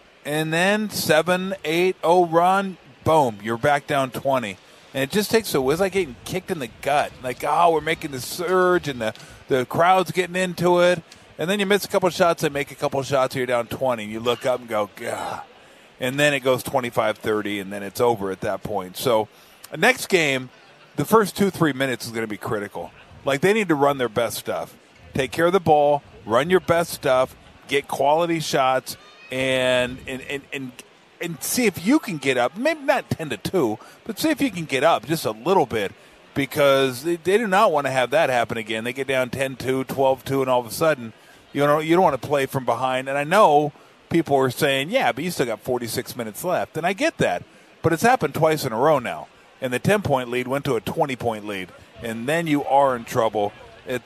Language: English